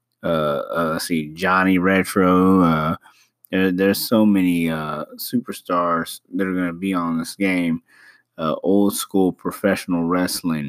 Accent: American